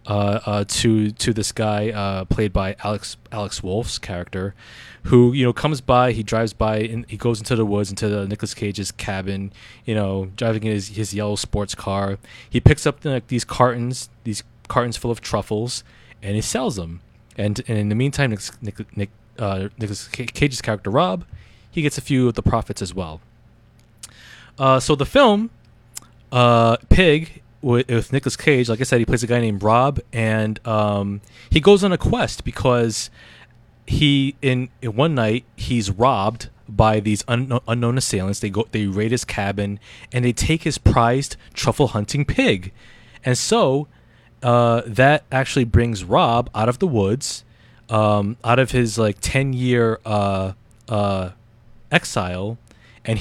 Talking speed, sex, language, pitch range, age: 170 wpm, male, English, 105-125 Hz, 20-39